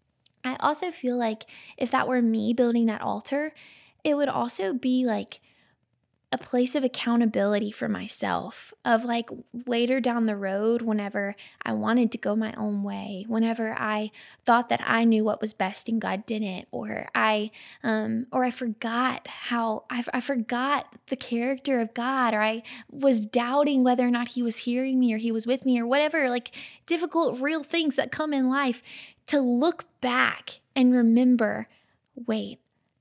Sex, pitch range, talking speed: female, 220-255 Hz, 175 wpm